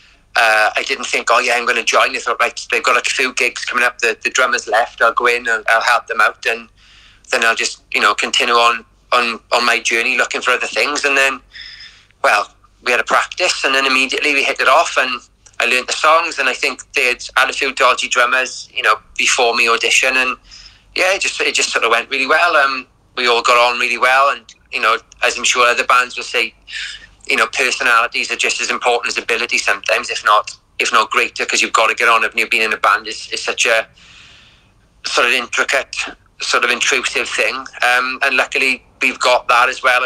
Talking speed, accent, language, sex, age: 235 wpm, British, English, male, 30-49